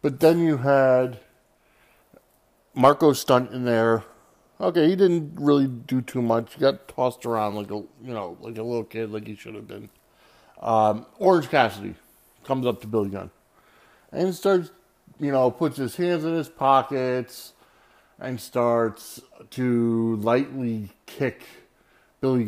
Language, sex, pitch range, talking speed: English, male, 115-160 Hz, 150 wpm